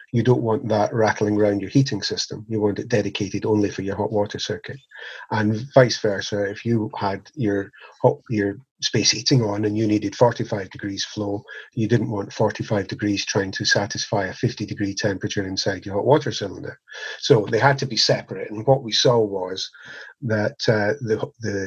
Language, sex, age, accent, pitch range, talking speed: English, male, 40-59, British, 105-120 Hz, 190 wpm